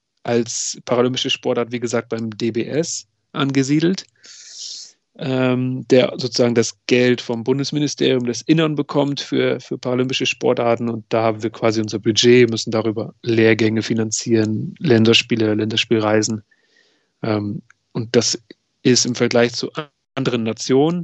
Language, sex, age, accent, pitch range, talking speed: German, male, 30-49, German, 115-130 Hz, 125 wpm